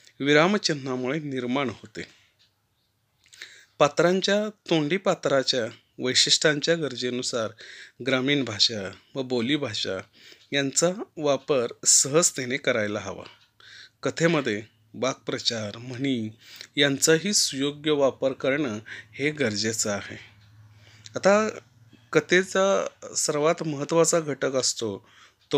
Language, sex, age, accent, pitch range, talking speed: Marathi, male, 30-49, native, 120-160 Hz, 75 wpm